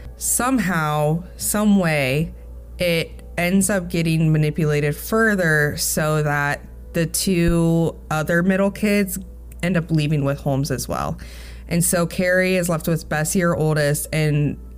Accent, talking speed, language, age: American, 135 wpm, English, 20-39